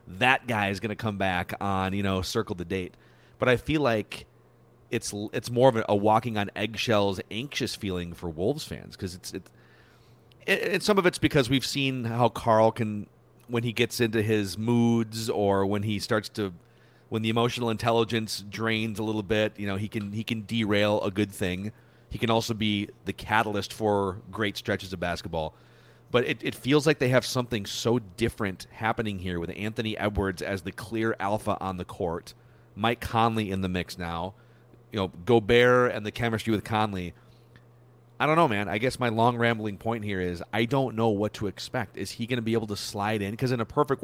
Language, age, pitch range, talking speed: English, 40-59, 100-120 Hz, 210 wpm